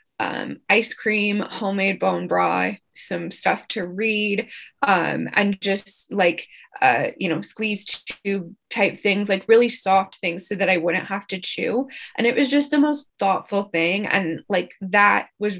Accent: American